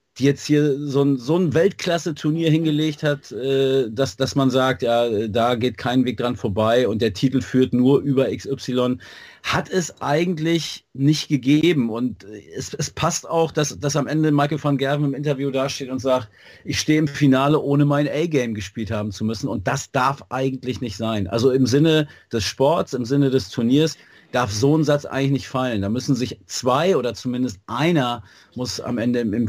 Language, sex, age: German, male, 40-59